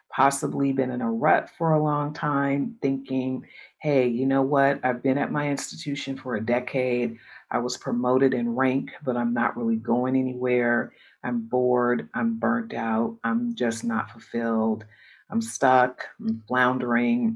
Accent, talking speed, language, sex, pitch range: American, 160 wpm, English, female, 125-155 Hz